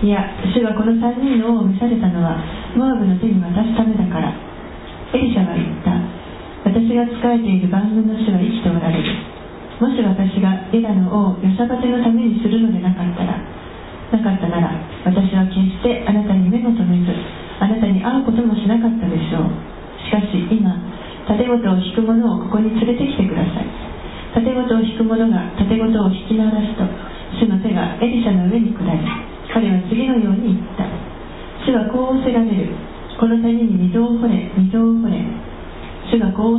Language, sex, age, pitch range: Japanese, female, 40-59, 190-230 Hz